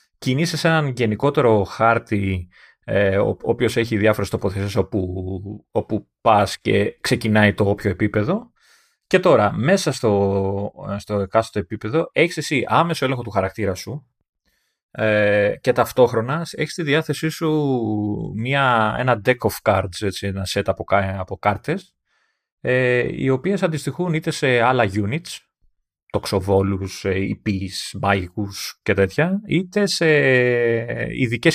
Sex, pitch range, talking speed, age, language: male, 100-130 Hz, 125 wpm, 30-49, Greek